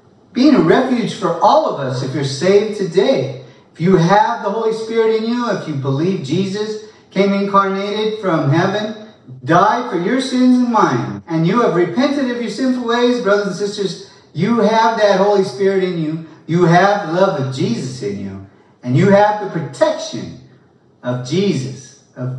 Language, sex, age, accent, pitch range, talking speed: English, male, 40-59, American, 140-210 Hz, 180 wpm